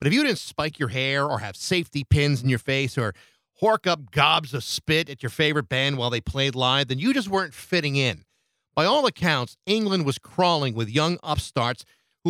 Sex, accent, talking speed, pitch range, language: male, American, 215 wpm, 130-170 Hz, English